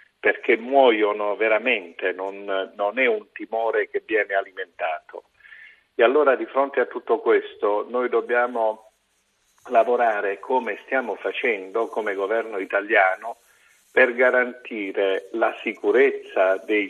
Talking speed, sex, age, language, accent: 115 wpm, male, 50-69, Italian, native